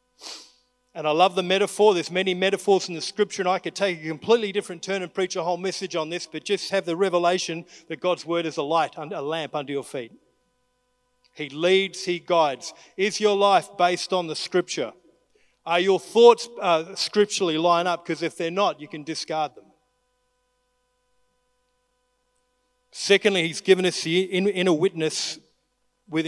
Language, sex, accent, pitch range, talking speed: English, male, Australian, 160-205 Hz, 175 wpm